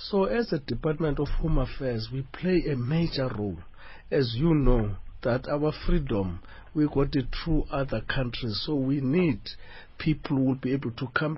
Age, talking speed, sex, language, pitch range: 50-69, 180 wpm, male, English, 115-160 Hz